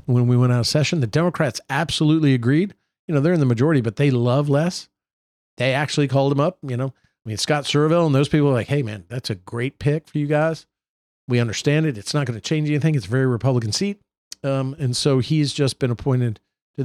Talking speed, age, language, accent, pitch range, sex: 235 wpm, 50-69, English, American, 120-145 Hz, male